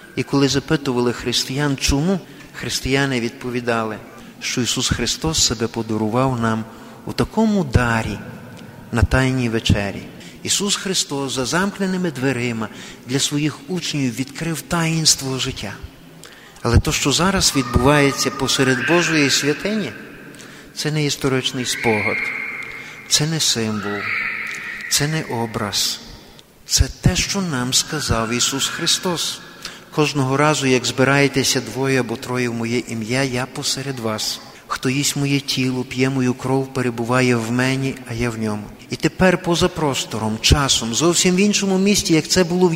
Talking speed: 135 wpm